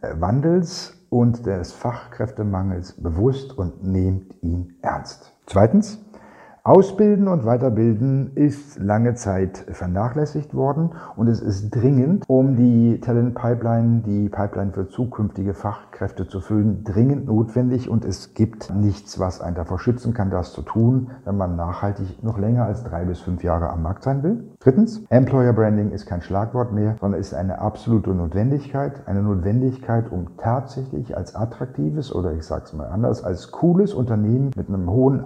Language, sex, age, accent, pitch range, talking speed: German, male, 50-69, German, 95-125 Hz, 155 wpm